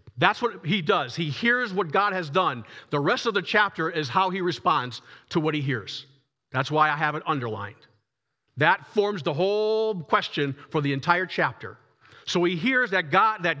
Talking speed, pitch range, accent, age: 195 wpm, 140-190 Hz, American, 50-69